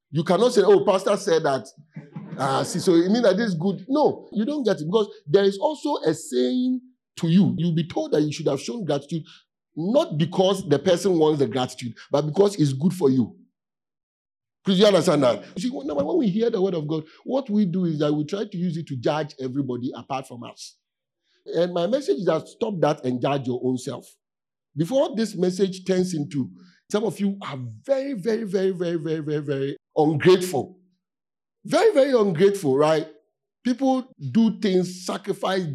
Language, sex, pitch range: English, male, 145-200 Hz